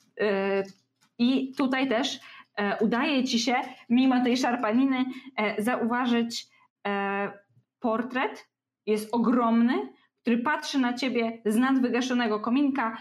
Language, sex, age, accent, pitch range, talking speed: Polish, female, 20-39, native, 200-250 Hz, 90 wpm